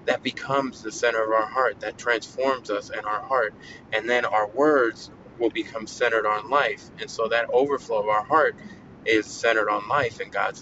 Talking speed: 200 wpm